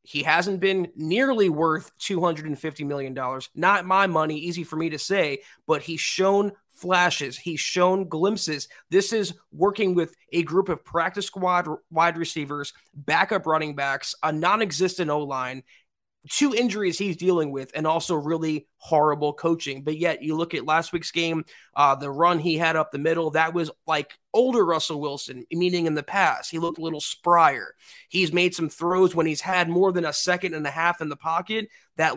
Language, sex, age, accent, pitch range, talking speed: English, male, 30-49, American, 155-185 Hz, 185 wpm